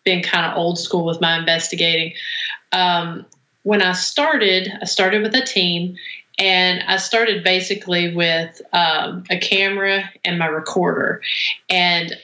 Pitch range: 170-200 Hz